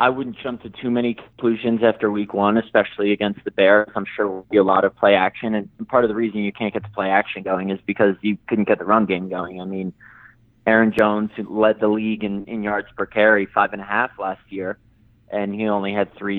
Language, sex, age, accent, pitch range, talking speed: English, male, 20-39, American, 100-115 Hz, 250 wpm